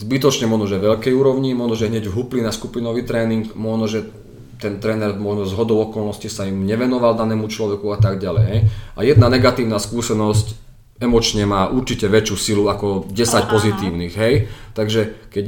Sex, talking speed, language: male, 170 wpm, Slovak